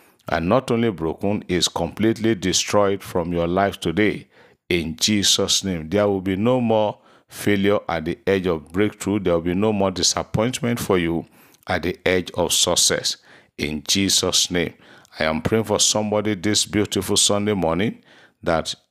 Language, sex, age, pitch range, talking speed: English, male, 50-69, 85-105 Hz, 160 wpm